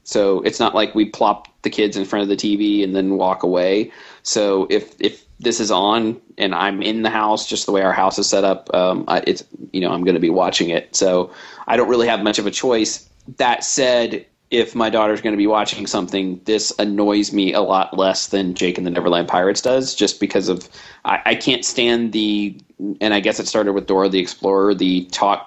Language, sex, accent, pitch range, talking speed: English, male, American, 95-110 Hz, 230 wpm